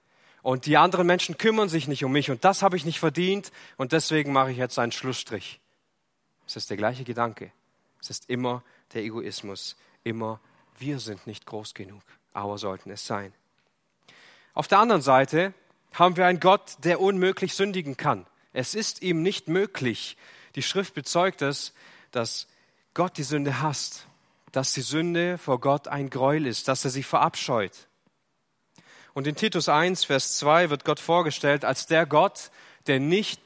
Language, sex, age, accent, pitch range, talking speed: German, male, 40-59, German, 125-175 Hz, 170 wpm